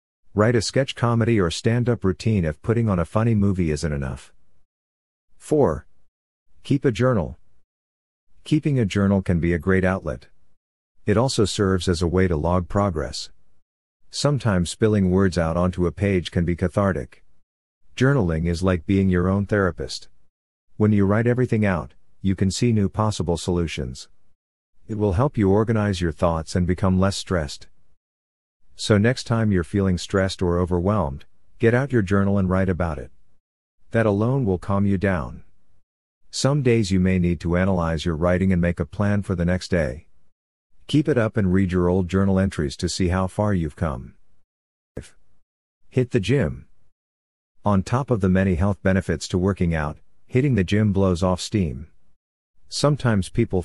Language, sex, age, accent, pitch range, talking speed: English, male, 50-69, American, 85-105 Hz, 170 wpm